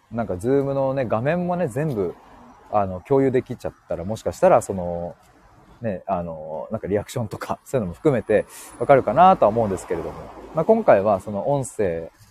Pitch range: 100-150 Hz